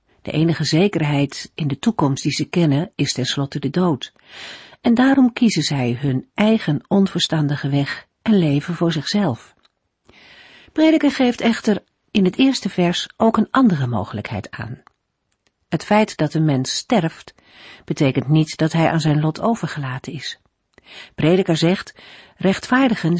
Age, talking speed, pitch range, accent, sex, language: 50-69, 140 wpm, 145-200 Hz, Dutch, female, Dutch